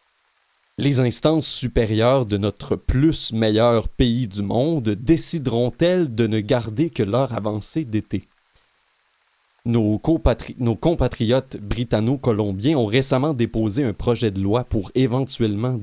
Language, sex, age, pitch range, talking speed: French, male, 30-49, 110-130 Hz, 120 wpm